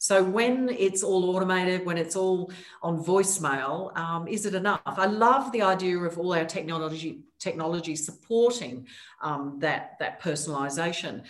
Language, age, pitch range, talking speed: English, 50-69, 160-200 Hz, 150 wpm